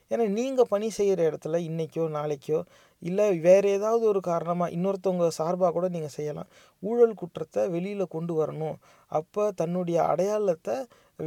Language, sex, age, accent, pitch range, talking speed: Tamil, male, 30-49, native, 165-205 Hz, 135 wpm